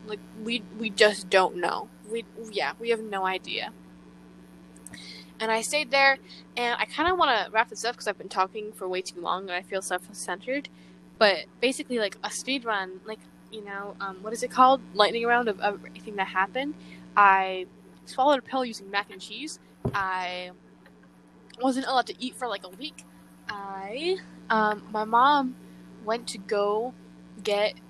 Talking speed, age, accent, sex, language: 175 wpm, 10-29, American, female, English